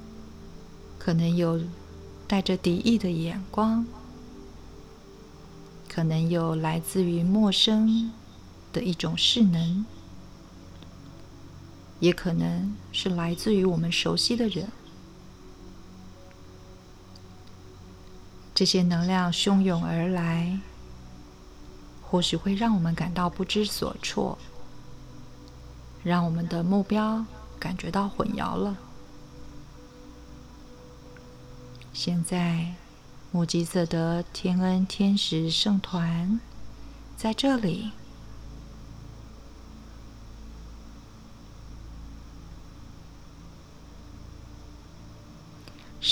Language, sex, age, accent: Chinese, female, 50-69, native